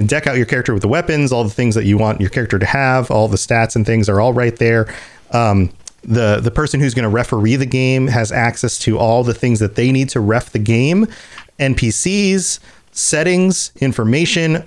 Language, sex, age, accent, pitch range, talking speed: English, male, 30-49, American, 115-170 Hz, 215 wpm